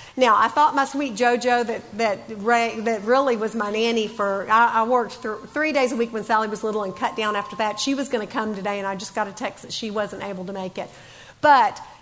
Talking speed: 260 wpm